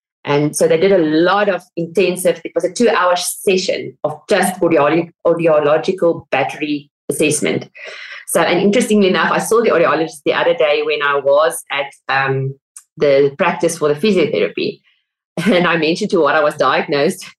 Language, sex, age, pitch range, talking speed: English, female, 30-49, 150-205 Hz, 170 wpm